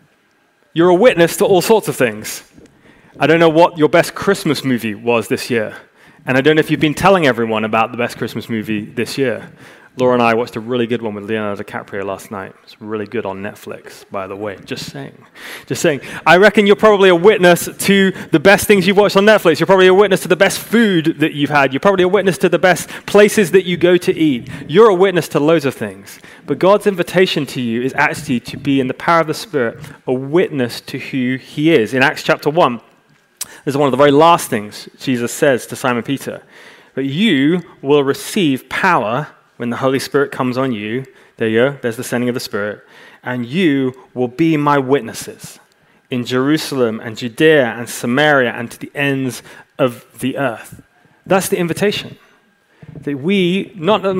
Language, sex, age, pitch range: English, male, 20-39, 125-175 Hz